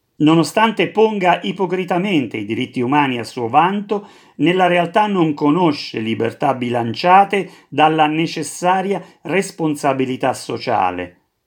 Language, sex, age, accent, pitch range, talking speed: Italian, male, 40-59, native, 145-180 Hz, 100 wpm